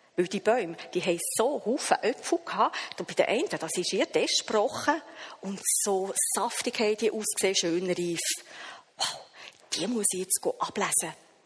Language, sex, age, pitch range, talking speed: German, female, 40-59, 180-250 Hz, 155 wpm